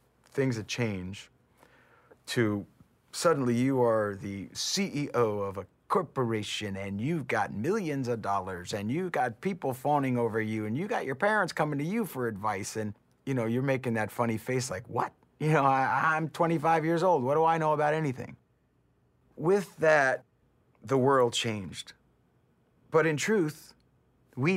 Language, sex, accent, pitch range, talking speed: English, male, American, 110-140 Hz, 165 wpm